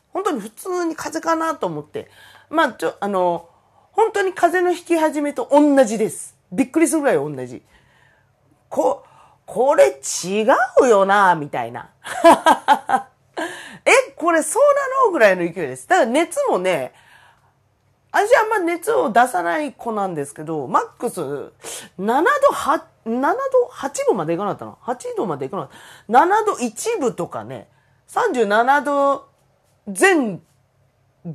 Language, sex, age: Japanese, female, 40-59